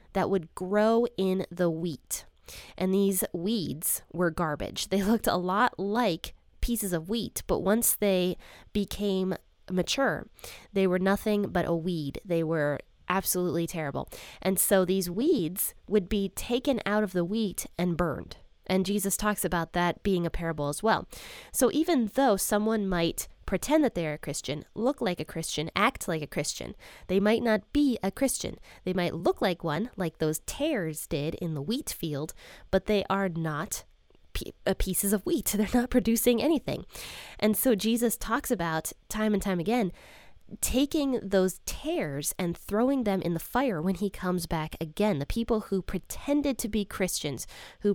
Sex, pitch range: female, 175-225 Hz